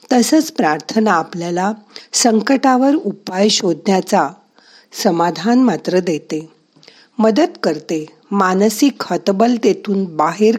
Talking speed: 75 wpm